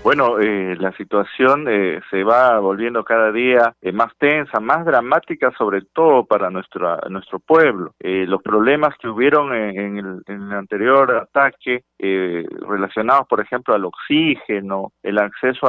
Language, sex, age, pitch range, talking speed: Spanish, male, 40-59, 105-130 Hz, 155 wpm